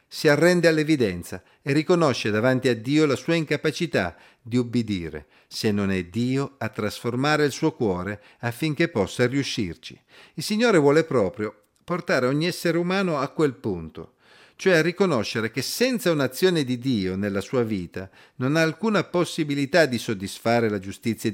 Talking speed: 155 wpm